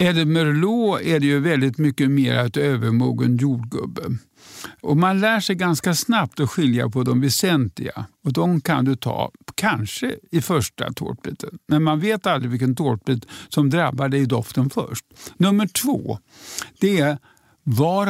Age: 50-69